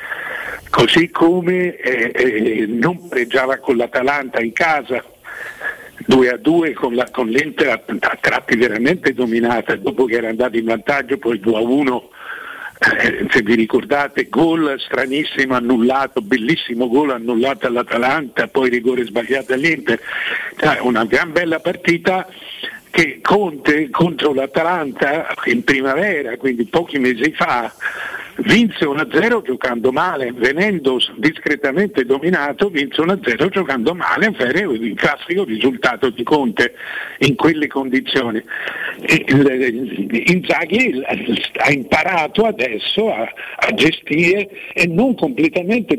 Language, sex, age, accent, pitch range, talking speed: Italian, male, 60-79, native, 130-175 Hz, 115 wpm